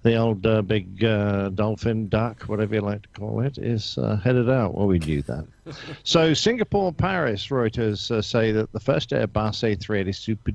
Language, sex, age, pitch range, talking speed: English, male, 50-69, 95-115 Hz, 190 wpm